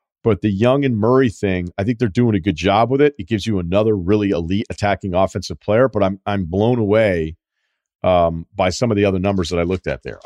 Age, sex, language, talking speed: 40-59, male, English, 240 wpm